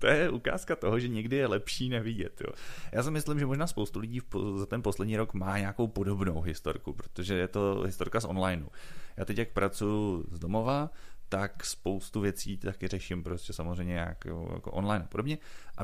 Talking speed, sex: 195 wpm, male